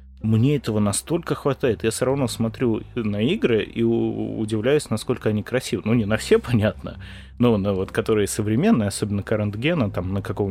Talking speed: 175 wpm